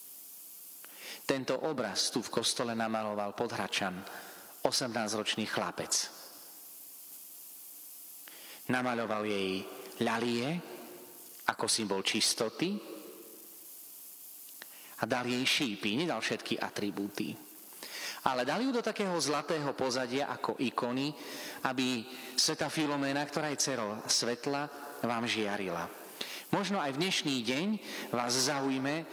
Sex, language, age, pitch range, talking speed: male, Slovak, 40-59, 115-145 Hz, 100 wpm